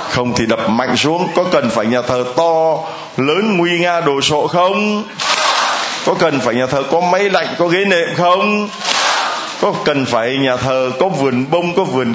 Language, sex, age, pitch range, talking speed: Vietnamese, male, 20-39, 145-205 Hz, 195 wpm